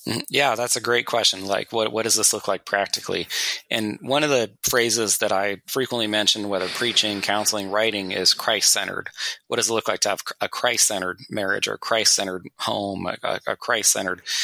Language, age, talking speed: English, 30-49, 185 wpm